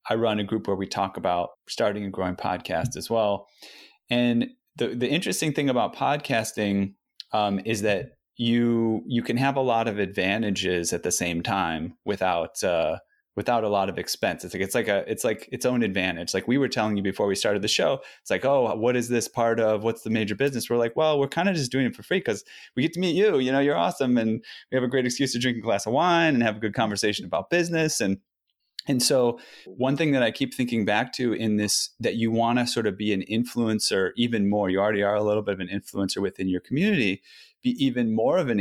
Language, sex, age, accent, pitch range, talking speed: English, male, 20-39, American, 100-130 Hz, 240 wpm